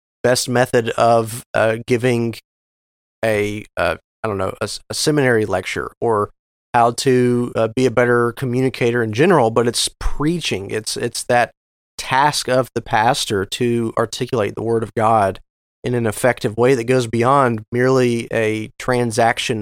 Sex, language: male, English